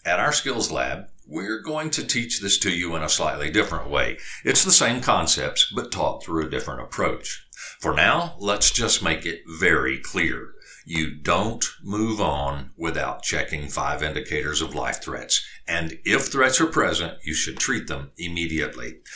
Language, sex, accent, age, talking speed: English, male, American, 60-79, 170 wpm